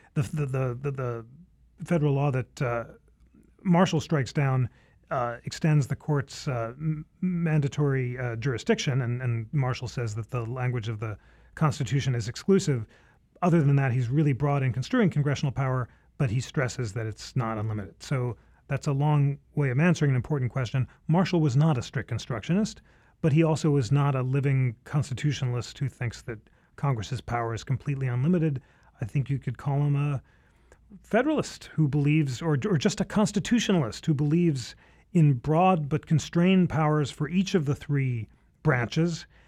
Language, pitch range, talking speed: English, 125-160 Hz, 165 wpm